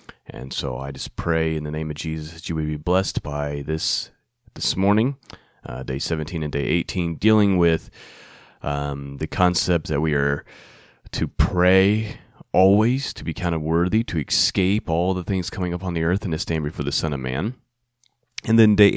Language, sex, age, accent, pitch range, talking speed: English, male, 30-49, American, 75-105 Hz, 195 wpm